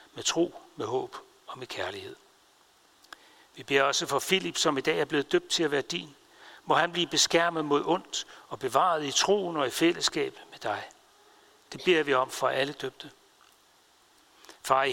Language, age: Danish, 60-79